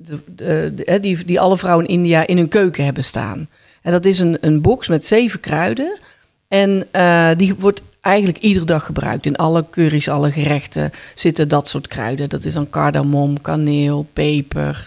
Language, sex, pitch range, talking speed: Dutch, female, 155-195 Hz, 185 wpm